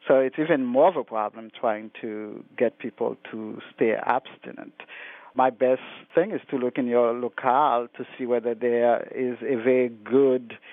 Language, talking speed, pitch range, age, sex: English, 175 wpm, 115-130 Hz, 50-69, male